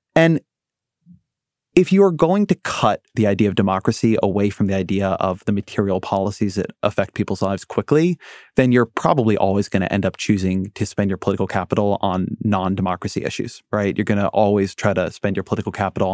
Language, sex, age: English, male, 30-49